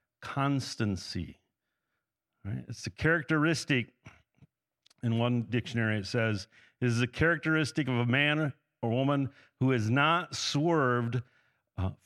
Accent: American